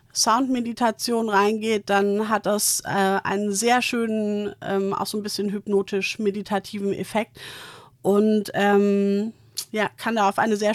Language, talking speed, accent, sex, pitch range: German, 135 wpm, German, female, 195-225 Hz